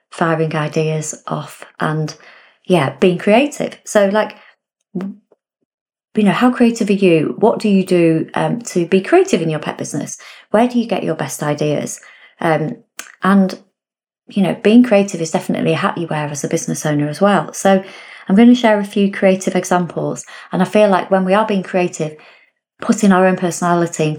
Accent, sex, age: British, female, 30-49